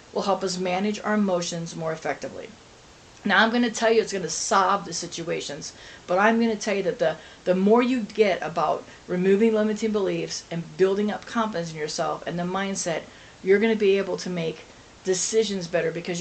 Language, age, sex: English, 40-59, female